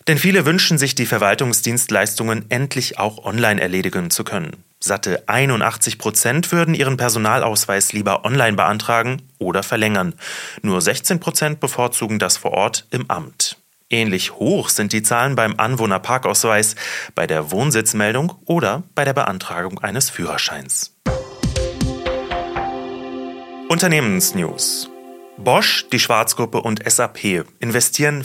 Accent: German